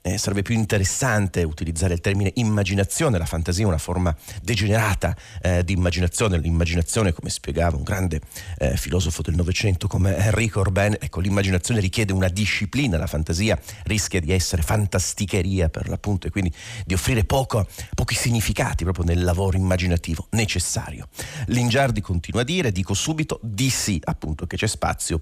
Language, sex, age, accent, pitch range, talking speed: Italian, male, 40-59, native, 85-110 Hz, 155 wpm